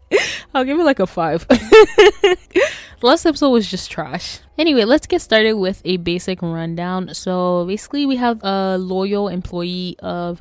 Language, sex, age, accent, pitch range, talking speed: English, female, 10-29, American, 170-200 Hz, 160 wpm